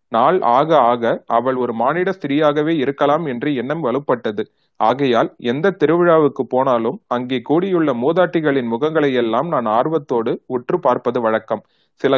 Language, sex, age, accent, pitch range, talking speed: Tamil, male, 30-49, native, 125-170 Hz, 130 wpm